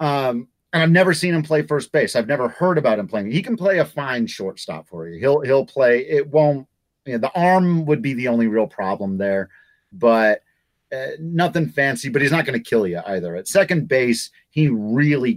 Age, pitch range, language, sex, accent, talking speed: 30-49, 115-160 Hz, English, male, American, 220 wpm